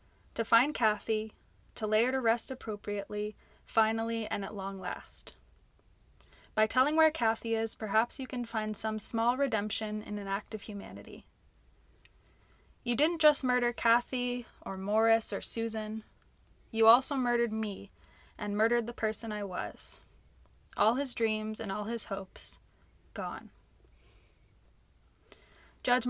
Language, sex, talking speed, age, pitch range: English, female, 135 wpm, 20-39, 200-240 Hz